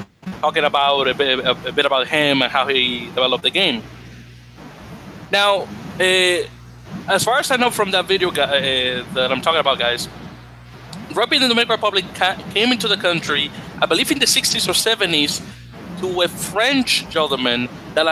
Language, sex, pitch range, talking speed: English, male, 135-185 Hz, 175 wpm